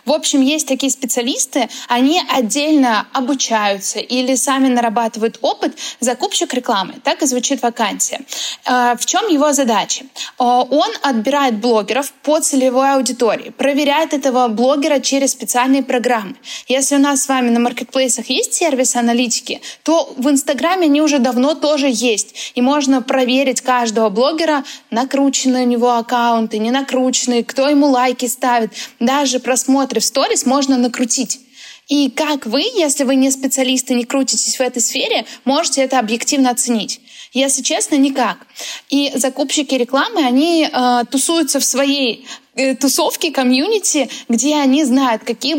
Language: Russian